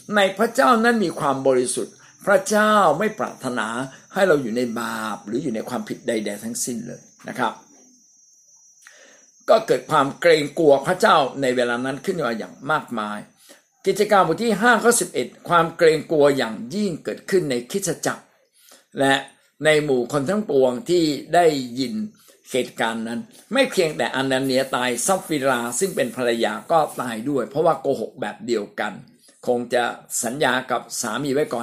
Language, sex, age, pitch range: Thai, male, 60-79, 125-205 Hz